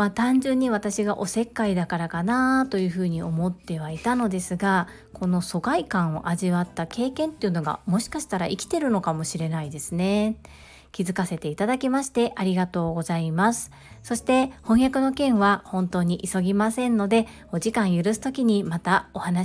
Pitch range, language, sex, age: 185-245 Hz, Japanese, female, 40-59